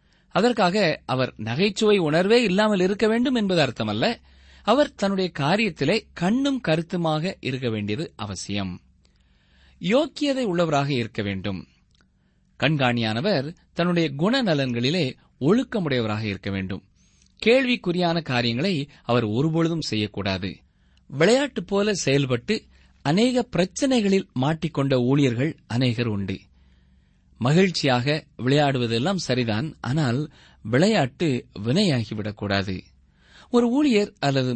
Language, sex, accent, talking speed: Tamil, male, native, 85 wpm